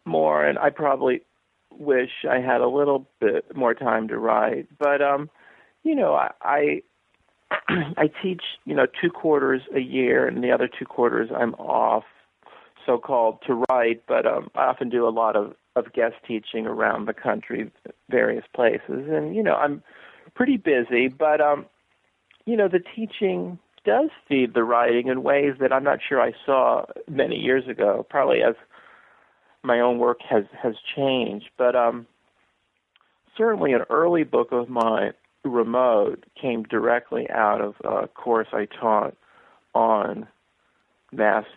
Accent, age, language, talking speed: American, 40-59, English, 155 wpm